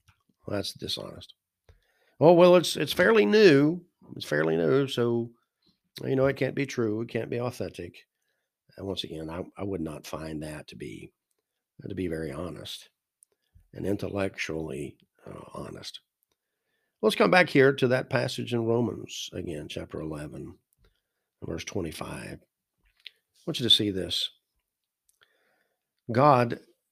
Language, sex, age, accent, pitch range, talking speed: English, male, 50-69, American, 95-115 Hz, 140 wpm